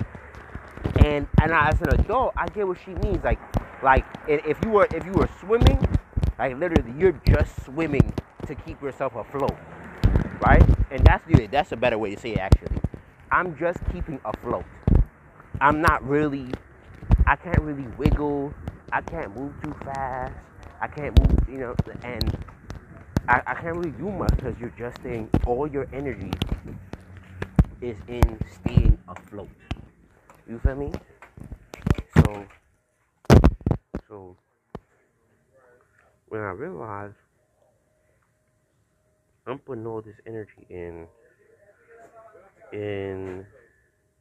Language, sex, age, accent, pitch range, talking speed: English, male, 30-49, American, 95-135 Hz, 130 wpm